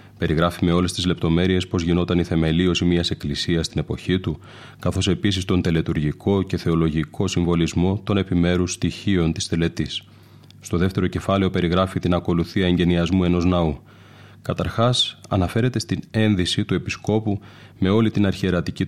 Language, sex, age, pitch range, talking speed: Greek, male, 30-49, 85-100 Hz, 145 wpm